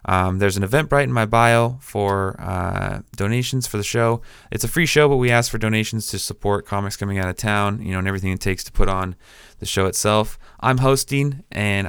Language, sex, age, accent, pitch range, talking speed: English, male, 20-39, American, 95-115 Hz, 220 wpm